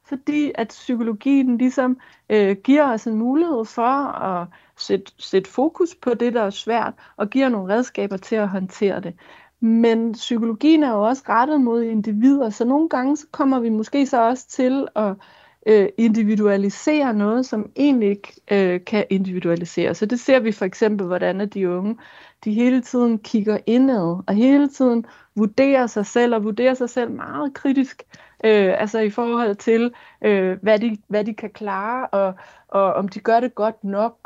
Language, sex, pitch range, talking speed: Danish, female, 200-245 Hz, 175 wpm